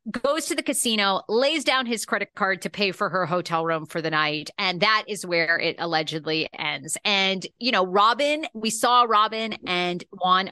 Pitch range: 175-245 Hz